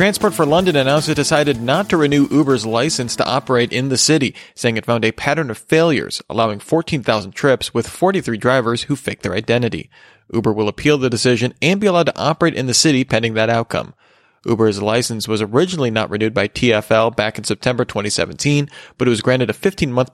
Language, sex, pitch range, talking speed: English, male, 115-145 Hz, 200 wpm